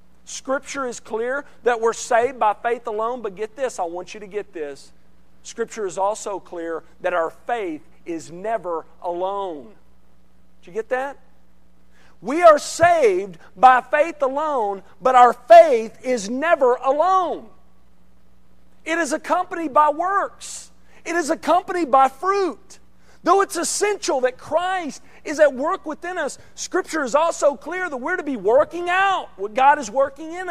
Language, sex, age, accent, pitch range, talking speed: English, male, 50-69, American, 195-315 Hz, 155 wpm